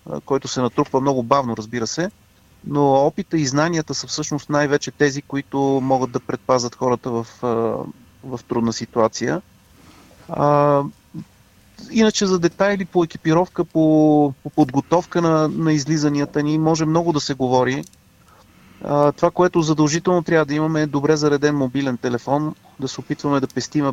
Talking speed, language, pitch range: 145 wpm, Bulgarian, 125-150 Hz